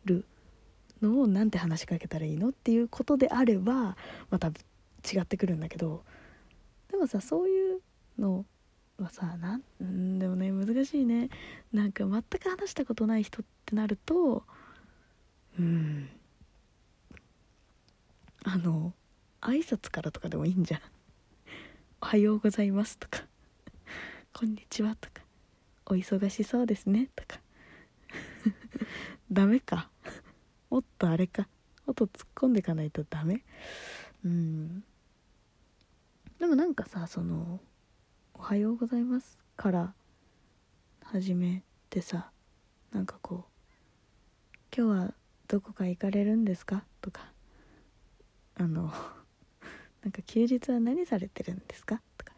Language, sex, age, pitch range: Japanese, female, 20-39, 175-235 Hz